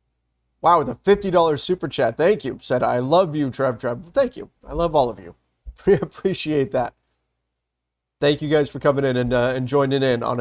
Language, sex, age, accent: English, male, 30-49, American